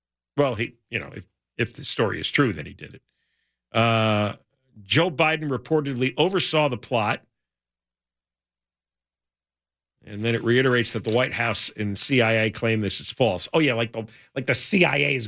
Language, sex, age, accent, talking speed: English, male, 50-69, American, 170 wpm